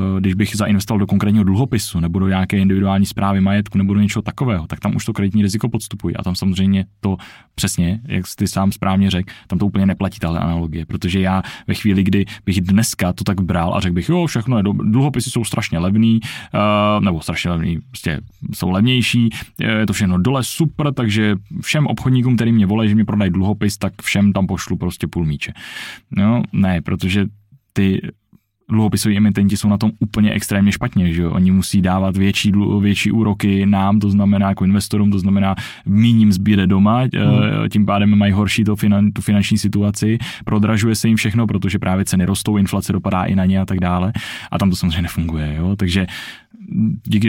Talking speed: 190 wpm